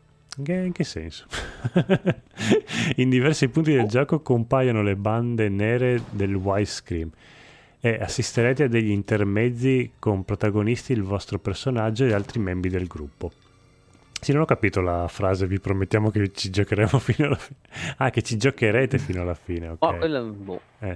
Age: 30-49